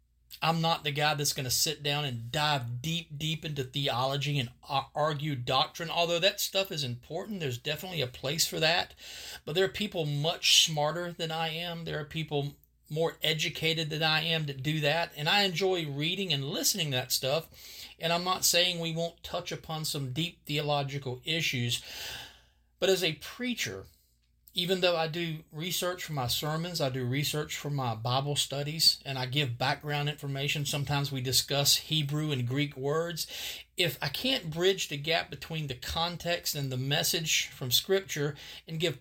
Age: 40-59